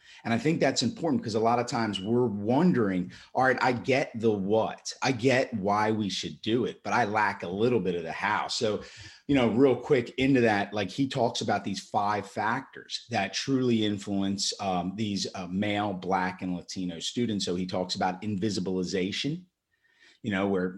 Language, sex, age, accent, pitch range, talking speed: English, male, 30-49, American, 95-120 Hz, 195 wpm